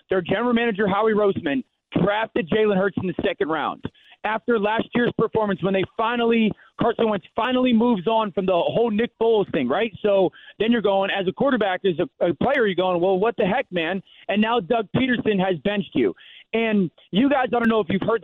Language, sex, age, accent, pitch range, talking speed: English, male, 30-49, American, 190-230 Hz, 215 wpm